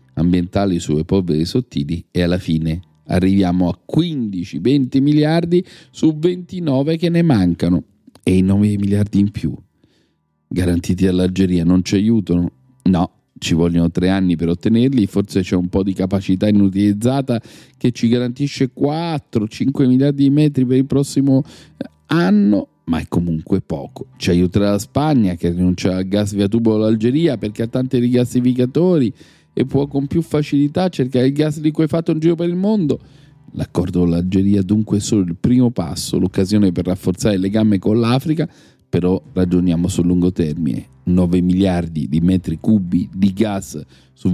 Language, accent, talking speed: Italian, native, 155 wpm